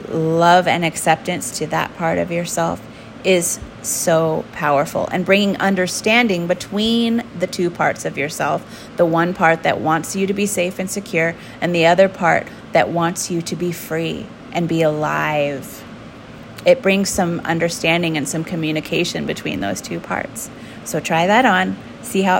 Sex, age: female, 30-49